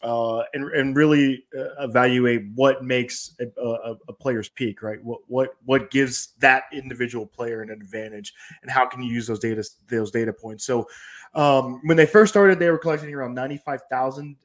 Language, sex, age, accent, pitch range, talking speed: English, male, 20-39, American, 115-140 Hz, 180 wpm